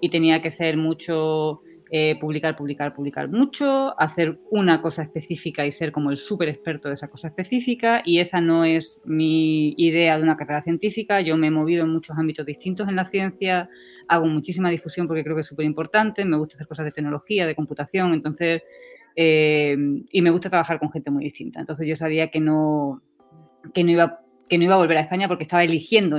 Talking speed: 205 wpm